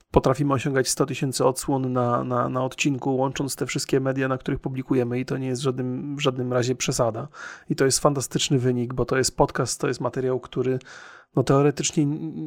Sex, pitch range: male, 130-150 Hz